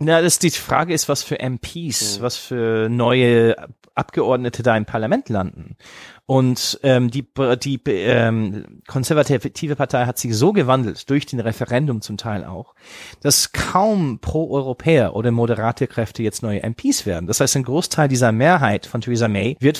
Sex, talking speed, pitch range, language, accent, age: male, 160 wpm, 115-150 Hz, German, German, 30-49